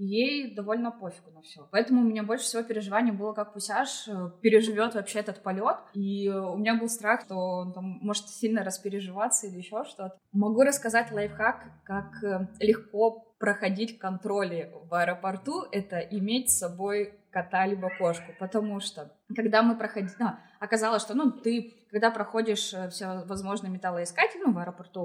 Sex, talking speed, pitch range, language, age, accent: female, 160 wpm, 195-225 Hz, Russian, 20-39, native